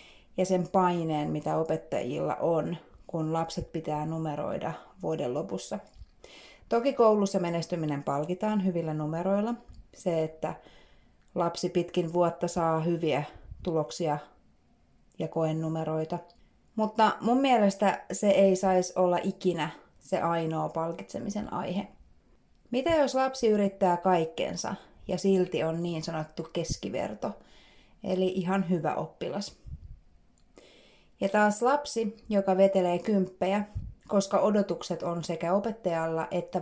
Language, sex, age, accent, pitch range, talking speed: Finnish, female, 30-49, native, 165-200 Hz, 110 wpm